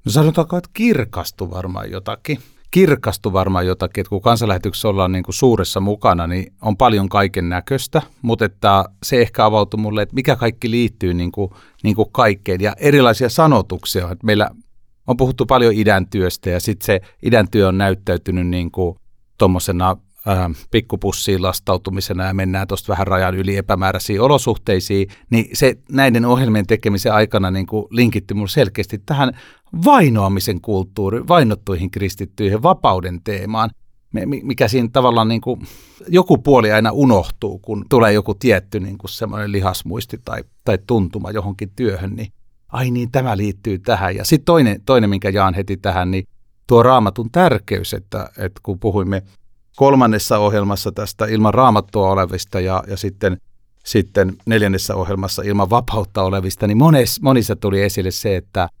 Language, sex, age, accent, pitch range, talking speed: Finnish, male, 30-49, native, 95-115 Hz, 150 wpm